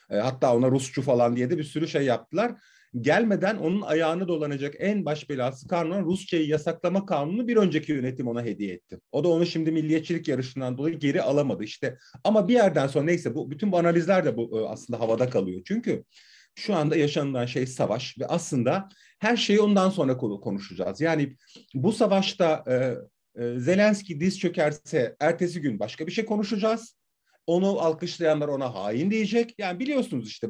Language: Turkish